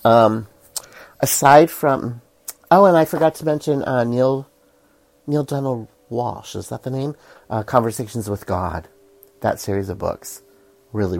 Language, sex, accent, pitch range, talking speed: English, male, American, 95-135 Hz, 145 wpm